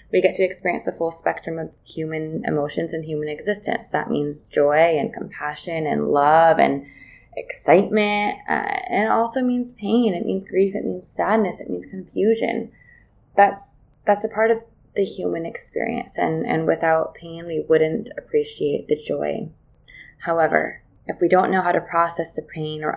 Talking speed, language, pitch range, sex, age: 170 wpm, English, 150-200 Hz, female, 20-39